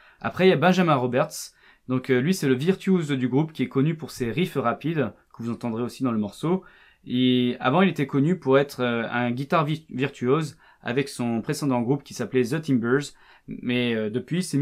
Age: 20-39